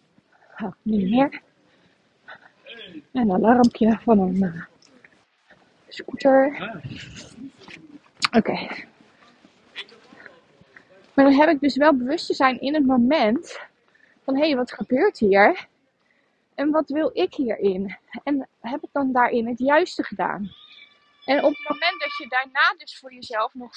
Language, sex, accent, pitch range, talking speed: Dutch, female, Dutch, 235-295 Hz, 130 wpm